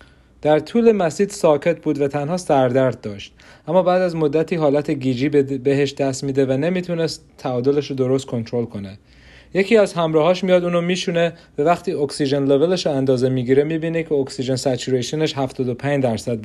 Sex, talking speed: male, 155 wpm